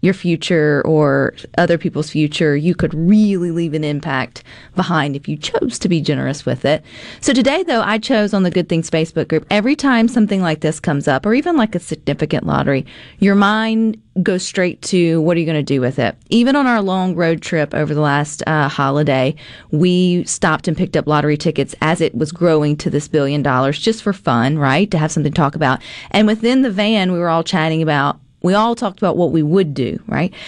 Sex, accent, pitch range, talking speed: female, American, 150-210 Hz, 220 wpm